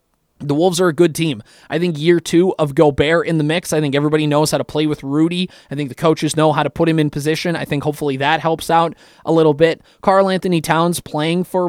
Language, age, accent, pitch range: English, 20-39, American, 145-170 Hz